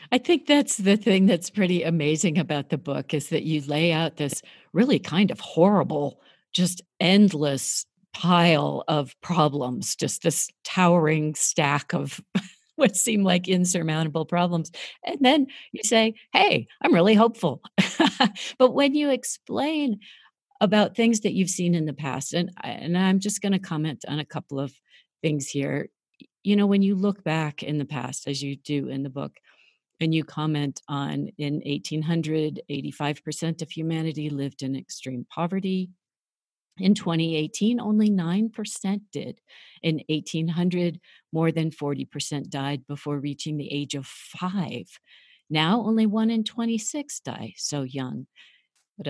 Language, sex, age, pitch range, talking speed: English, female, 50-69, 145-200 Hz, 150 wpm